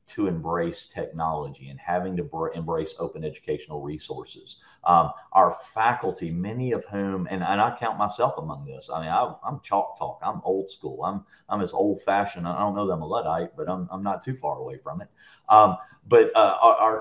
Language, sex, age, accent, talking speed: English, male, 40-59, American, 200 wpm